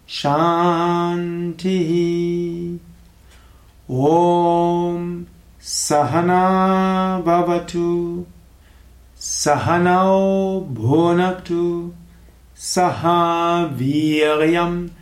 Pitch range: 150-175 Hz